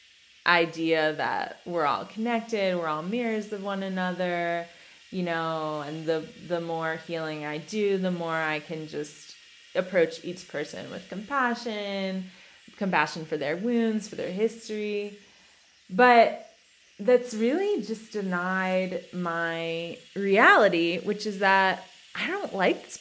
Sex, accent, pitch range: female, American, 170-225 Hz